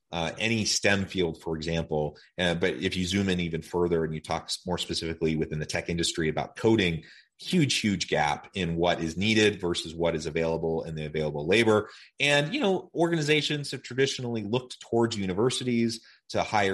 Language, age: English, 30-49